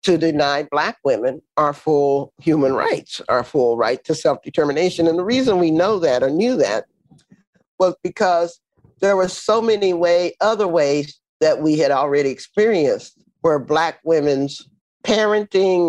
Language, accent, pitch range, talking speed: English, American, 150-220 Hz, 145 wpm